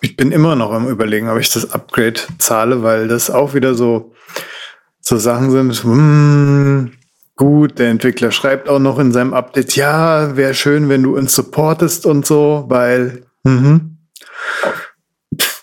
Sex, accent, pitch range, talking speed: male, German, 120-135 Hz, 160 wpm